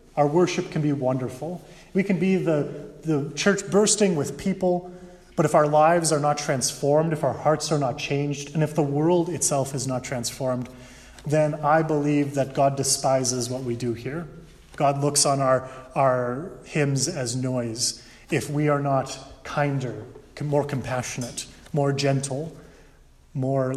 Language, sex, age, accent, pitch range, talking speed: English, male, 30-49, Canadian, 130-155 Hz, 160 wpm